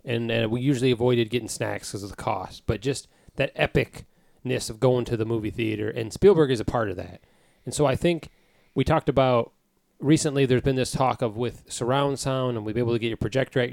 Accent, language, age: American, English, 30-49